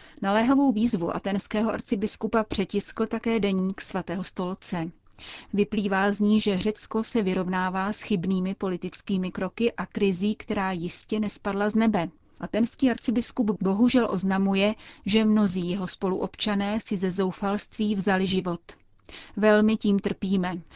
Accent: native